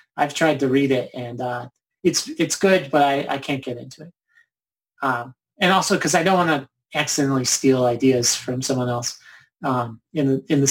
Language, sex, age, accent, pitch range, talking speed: English, male, 30-49, American, 135-160 Hz, 195 wpm